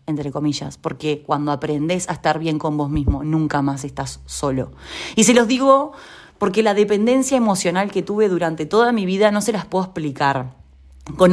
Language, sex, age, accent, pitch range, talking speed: Spanish, female, 20-39, Argentinian, 155-215 Hz, 185 wpm